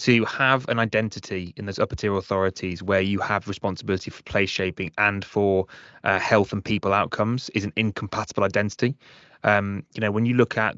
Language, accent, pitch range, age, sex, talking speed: English, British, 100-115 Hz, 20-39, male, 190 wpm